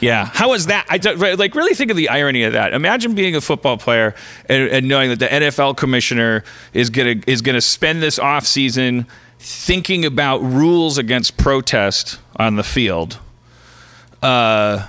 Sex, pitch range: male, 115-145 Hz